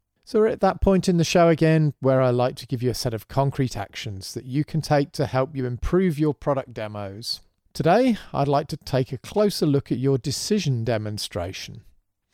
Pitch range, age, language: 115-150 Hz, 40-59, English